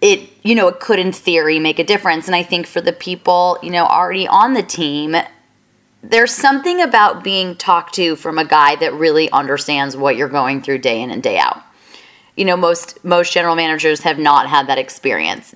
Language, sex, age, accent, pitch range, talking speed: English, female, 20-39, American, 155-195 Hz, 210 wpm